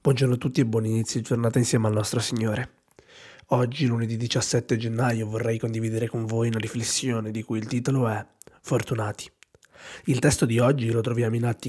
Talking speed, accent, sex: 185 wpm, native, male